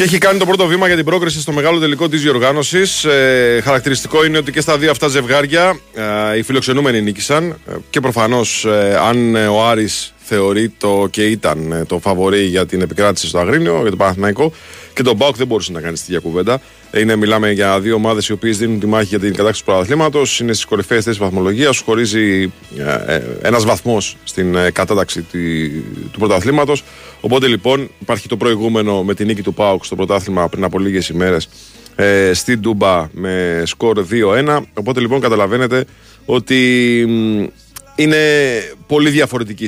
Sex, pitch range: male, 90-130 Hz